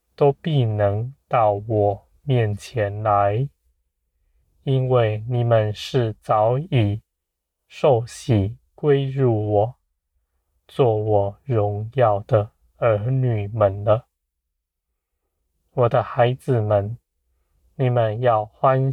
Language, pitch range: Chinese, 90-120 Hz